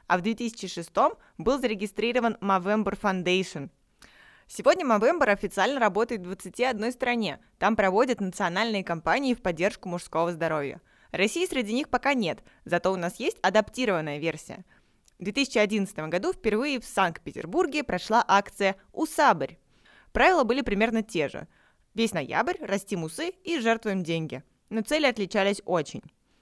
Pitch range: 185-245 Hz